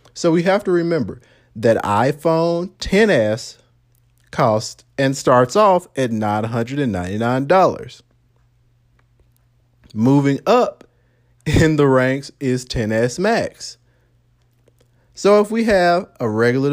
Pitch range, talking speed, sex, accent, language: 120-155 Hz, 100 wpm, male, American, English